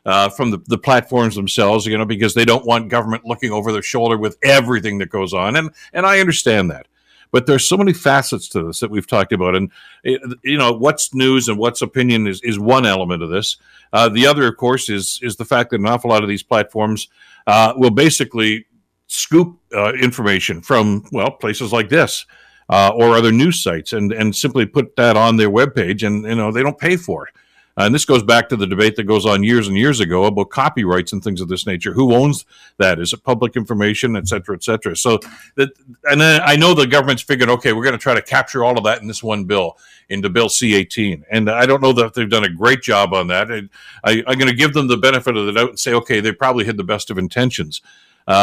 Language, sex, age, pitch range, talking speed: English, male, 60-79, 100-125 Hz, 240 wpm